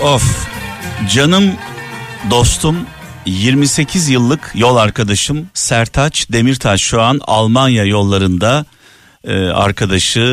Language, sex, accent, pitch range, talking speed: Turkish, male, native, 100-135 Hz, 85 wpm